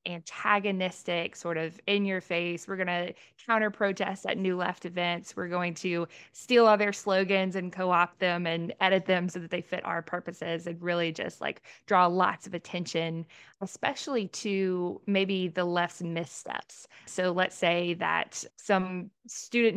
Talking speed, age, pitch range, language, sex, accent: 165 wpm, 20-39, 170-200 Hz, English, female, American